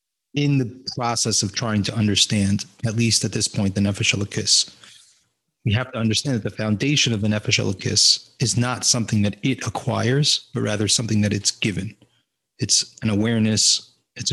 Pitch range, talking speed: 105-120 Hz, 170 wpm